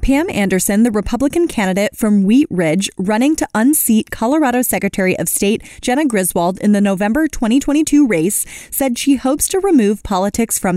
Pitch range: 200-275 Hz